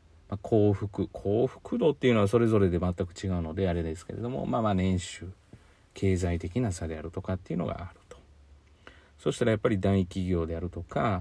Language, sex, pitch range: Japanese, male, 90-115 Hz